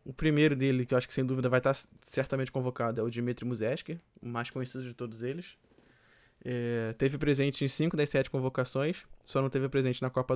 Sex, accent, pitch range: male, Brazilian, 125-140 Hz